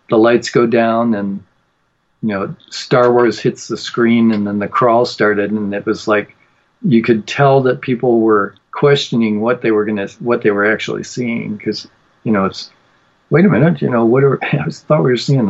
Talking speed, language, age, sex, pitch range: 205 wpm, English, 50-69, male, 110-125 Hz